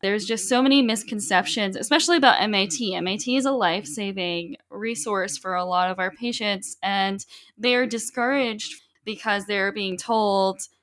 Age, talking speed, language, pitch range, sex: 10-29, 155 wpm, English, 195-245 Hz, female